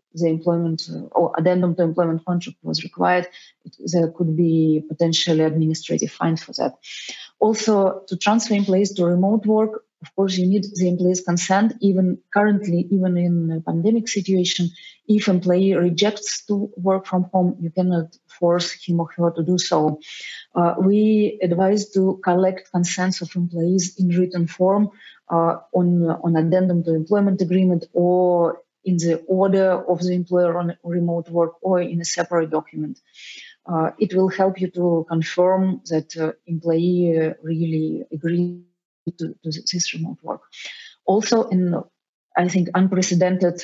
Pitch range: 170-190 Hz